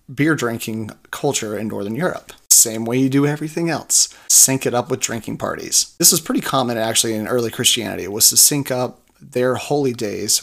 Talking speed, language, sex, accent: 195 wpm, English, male, American